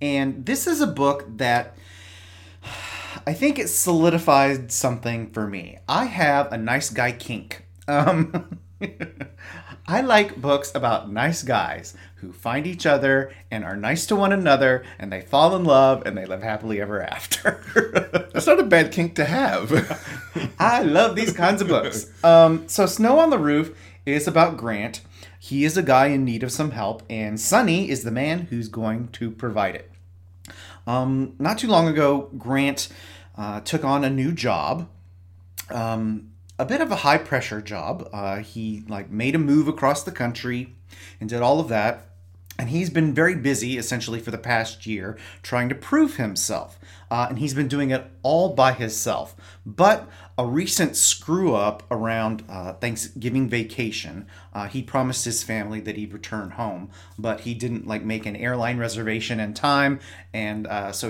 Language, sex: English, male